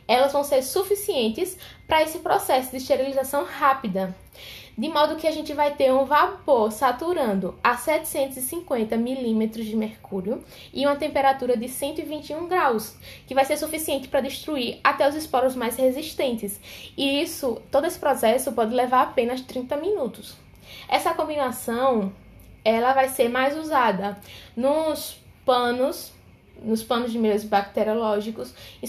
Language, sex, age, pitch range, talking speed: Portuguese, female, 10-29, 225-285 Hz, 140 wpm